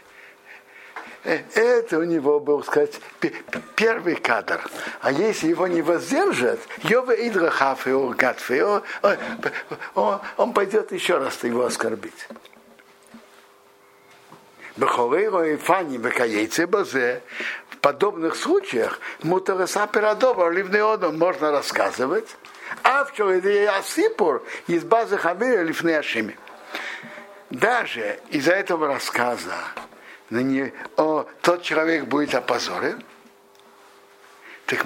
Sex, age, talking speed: male, 60-79, 60 wpm